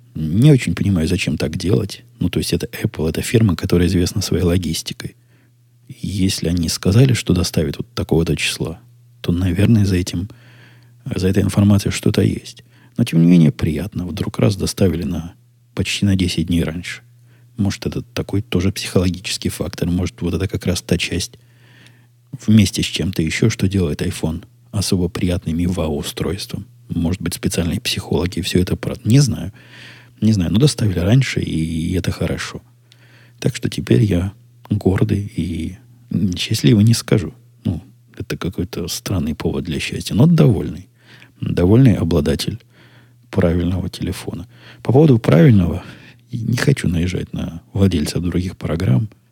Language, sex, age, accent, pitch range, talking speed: Russian, male, 20-39, native, 85-120 Hz, 150 wpm